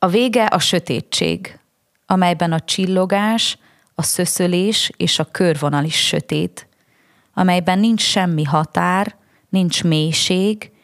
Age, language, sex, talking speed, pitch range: 20-39, Hungarian, female, 110 wpm, 155-190 Hz